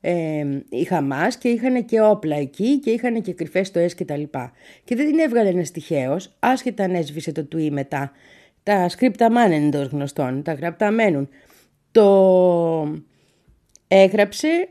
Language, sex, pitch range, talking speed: Greek, female, 160-250 Hz, 145 wpm